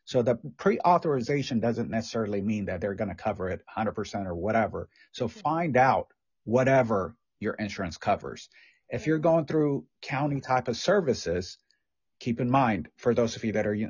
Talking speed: 170 wpm